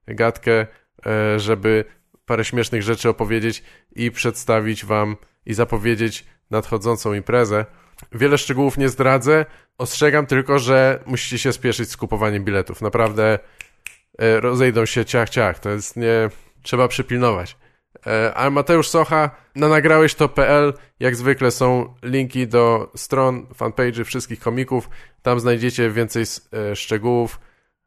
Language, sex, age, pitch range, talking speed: Polish, male, 20-39, 110-130 Hz, 115 wpm